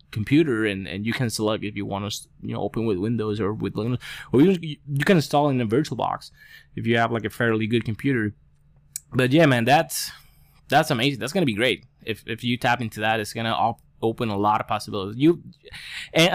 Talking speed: 225 wpm